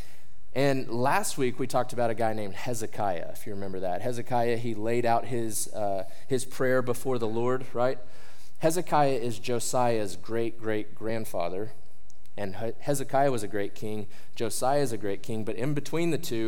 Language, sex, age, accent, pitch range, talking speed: English, male, 20-39, American, 110-135 Hz, 170 wpm